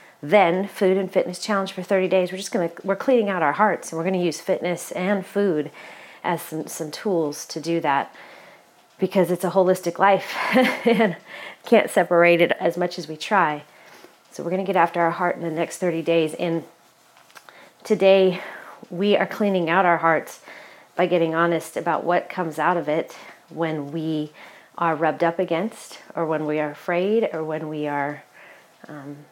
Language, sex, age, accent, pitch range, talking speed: English, female, 30-49, American, 160-190 Hz, 190 wpm